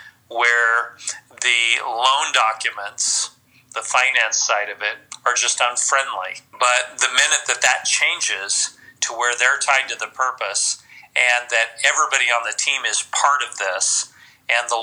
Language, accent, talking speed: English, American, 150 wpm